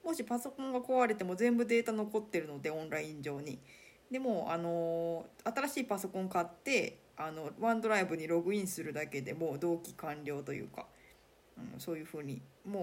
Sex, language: female, Japanese